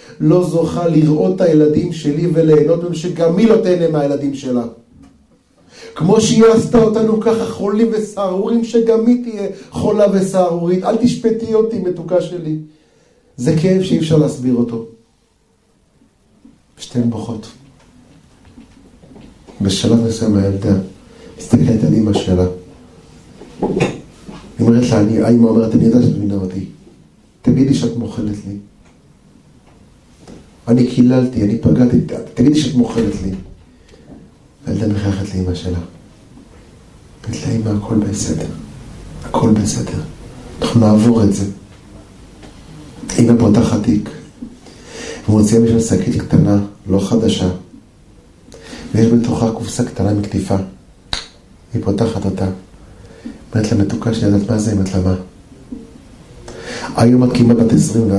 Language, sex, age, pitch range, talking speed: Hebrew, male, 30-49, 100-165 Hz, 115 wpm